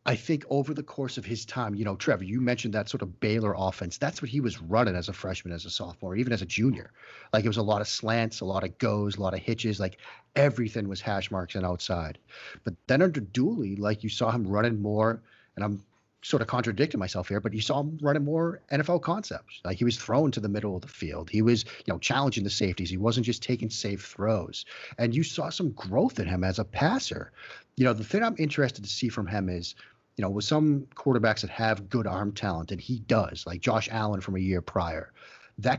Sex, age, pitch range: male, 40-59, 100-125 Hz